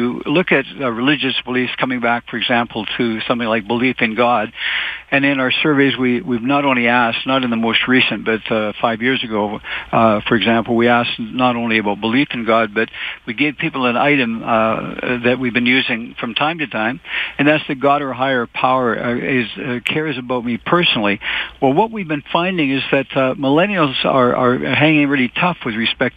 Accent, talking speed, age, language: American, 200 wpm, 60-79, English